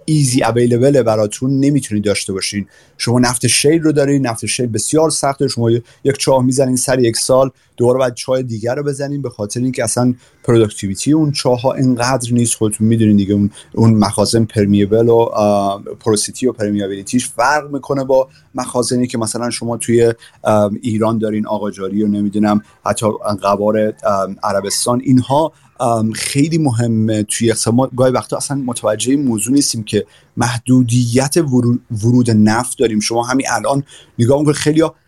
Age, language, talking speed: 30-49, Persian, 145 wpm